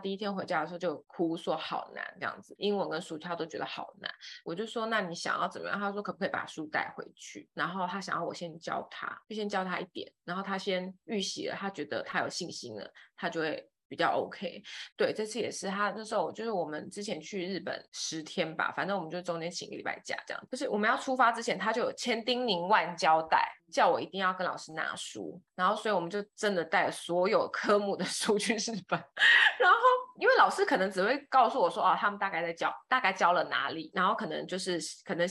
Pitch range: 175-230 Hz